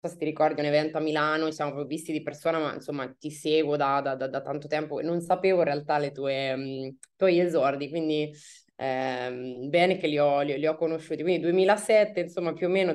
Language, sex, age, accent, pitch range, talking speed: Italian, female, 20-39, native, 145-165 Hz, 220 wpm